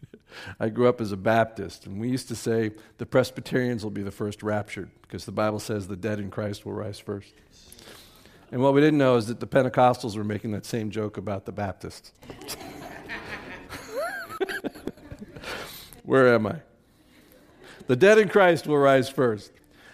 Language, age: English, 50-69